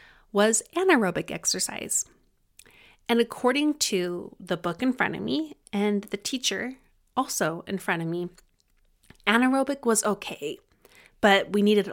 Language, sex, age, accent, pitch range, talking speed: English, female, 30-49, American, 180-230 Hz, 130 wpm